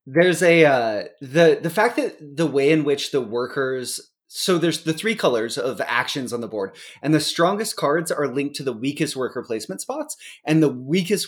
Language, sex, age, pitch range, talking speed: English, male, 20-39, 125-165 Hz, 200 wpm